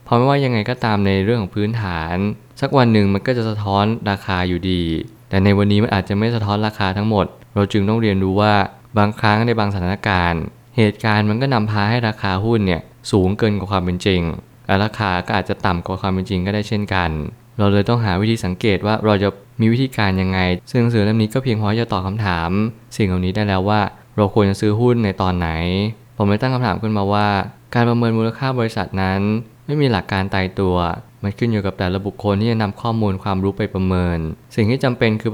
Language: Thai